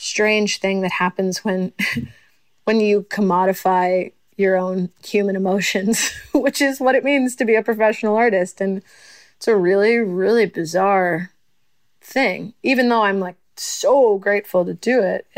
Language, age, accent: English, 20-39, American